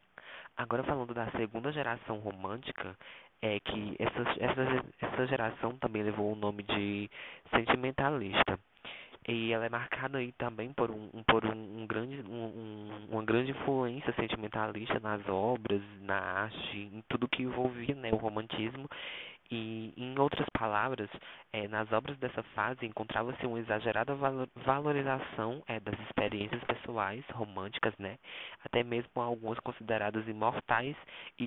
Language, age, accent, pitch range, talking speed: Portuguese, 20-39, Brazilian, 110-125 Hz, 135 wpm